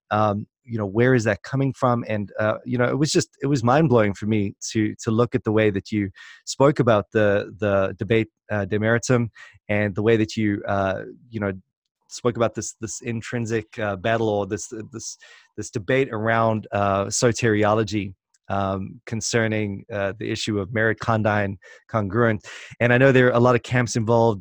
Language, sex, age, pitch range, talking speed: English, male, 20-39, 105-125 Hz, 190 wpm